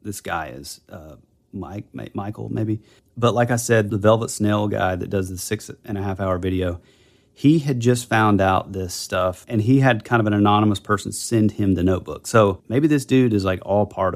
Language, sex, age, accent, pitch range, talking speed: English, male, 30-49, American, 100-120 Hz, 220 wpm